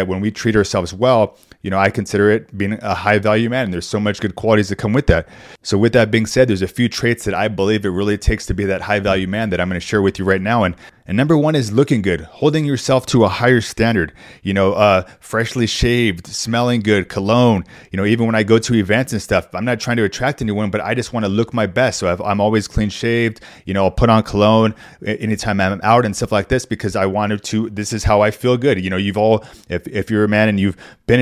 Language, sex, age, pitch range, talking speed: English, male, 30-49, 105-125 Hz, 270 wpm